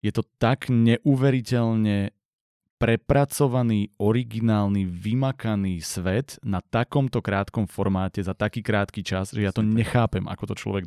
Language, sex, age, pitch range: Slovak, male, 30-49, 105-130 Hz